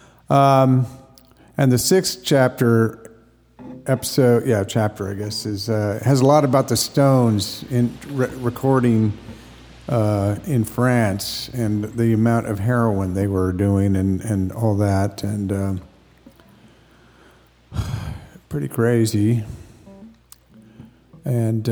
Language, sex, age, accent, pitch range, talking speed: English, male, 50-69, American, 105-120 Hz, 115 wpm